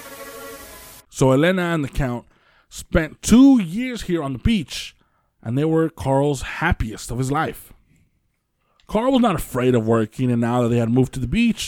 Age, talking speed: 20-39, 180 wpm